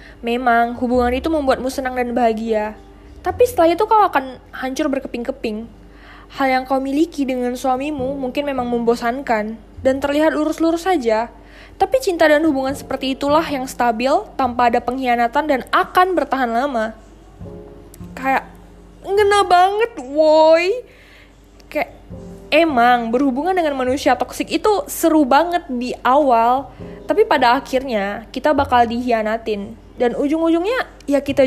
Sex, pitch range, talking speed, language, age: female, 245-325 Hz, 130 wpm, Indonesian, 10-29